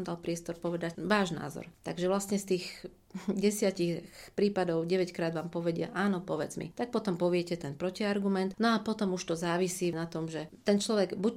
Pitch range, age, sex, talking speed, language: 165-195 Hz, 40-59, female, 185 wpm, Slovak